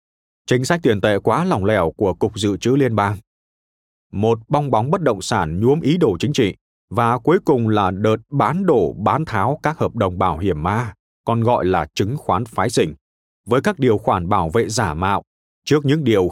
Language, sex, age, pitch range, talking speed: Vietnamese, male, 20-39, 95-130 Hz, 210 wpm